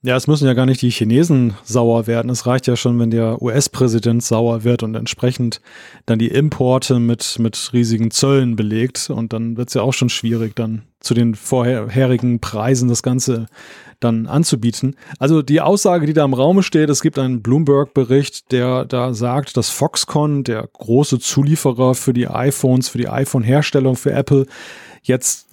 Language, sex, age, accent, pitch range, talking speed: German, male, 30-49, German, 125-145 Hz, 175 wpm